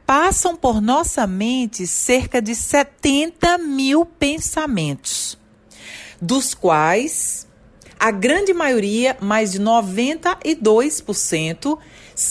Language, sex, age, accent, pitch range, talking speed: Portuguese, female, 40-59, Brazilian, 190-250 Hz, 85 wpm